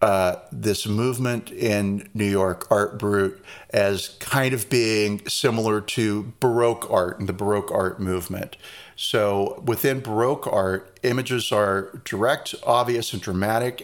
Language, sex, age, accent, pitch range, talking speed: English, male, 40-59, American, 100-120 Hz, 135 wpm